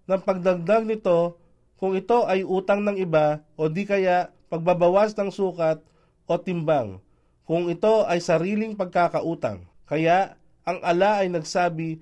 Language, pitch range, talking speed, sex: Filipino, 155-195 Hz, 135 wpm, male